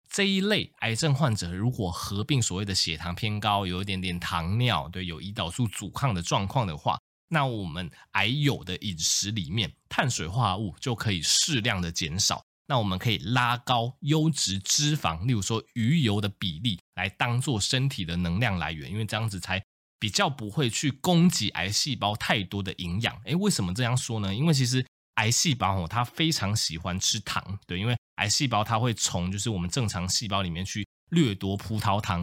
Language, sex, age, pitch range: Chinese, male, 20-39, 95-125 Hz